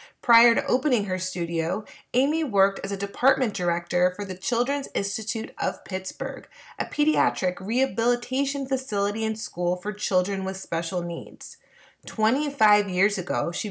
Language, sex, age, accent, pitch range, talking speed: English, female, 30-49, American, 185-250 Hz, 140 wpm